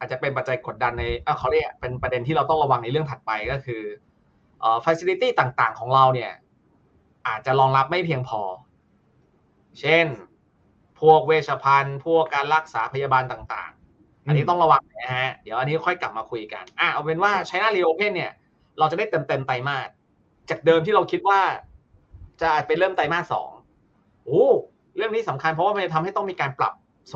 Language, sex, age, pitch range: Thai, male, 20-39, 135-185 Hz